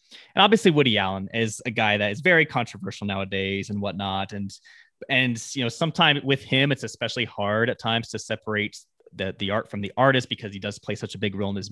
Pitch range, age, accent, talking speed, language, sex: 100-125 Hz, 20-39, American, 225 wpm, English, male